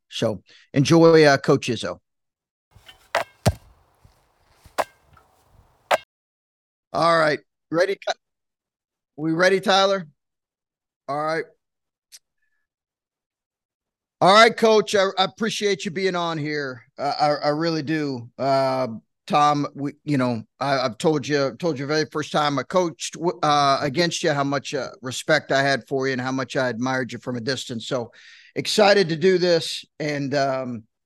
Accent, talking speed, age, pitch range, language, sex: American, 140 wpm, 50-69, 135-180 Hz, English, male